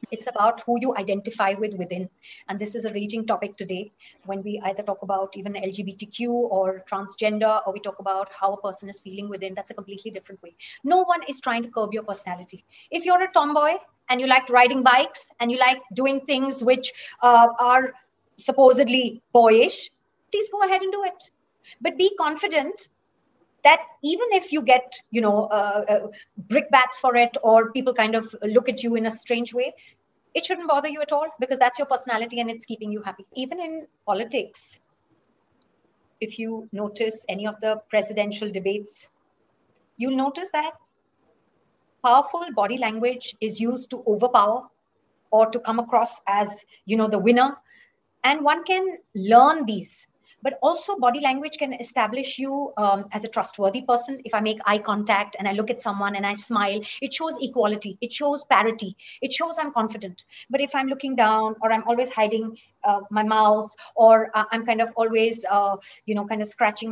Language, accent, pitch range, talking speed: English, Indian, 210-265 Hz, 185 wpm